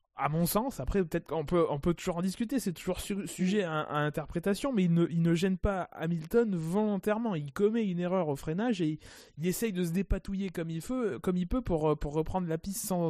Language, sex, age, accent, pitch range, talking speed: French, male, 20-39, French, 160-205 Hz, 245 wpm